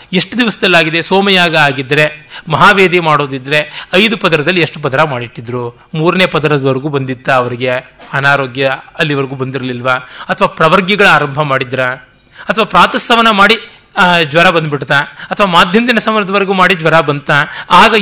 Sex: male